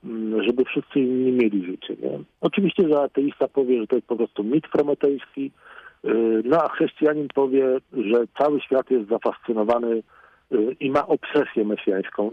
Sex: male